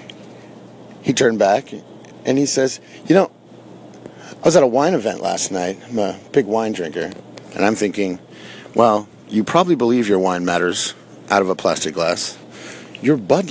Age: 40-59